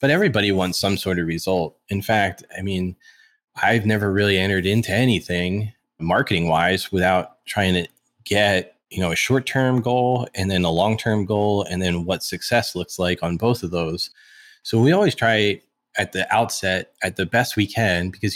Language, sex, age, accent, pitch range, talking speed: English, male, 20-39, American, 90-115 Hz, 180 wpm